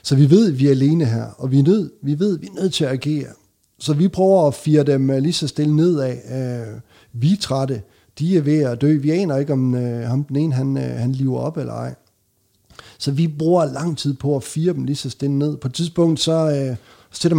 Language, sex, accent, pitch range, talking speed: Danish, male, native, 125-155 Hz, 240 wpm